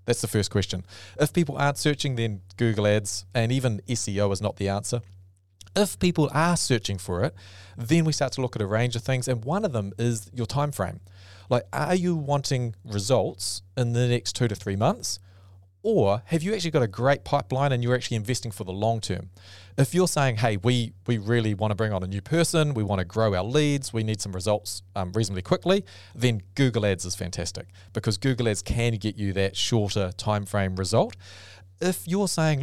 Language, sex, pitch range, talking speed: English, male, 100-130 Hz, 215 wpm